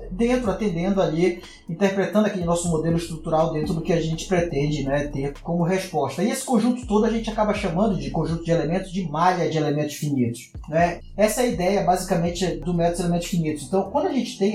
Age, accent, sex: 20-39, Brazilian, male